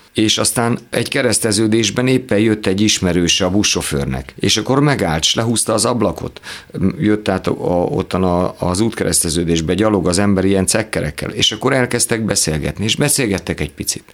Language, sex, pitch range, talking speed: Hungarian, male, 90-115 Hz, 150 wpm